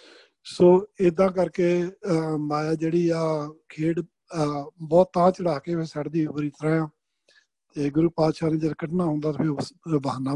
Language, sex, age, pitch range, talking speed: Punjabi, male, 50-69, 155-175 Hz, 135 wpm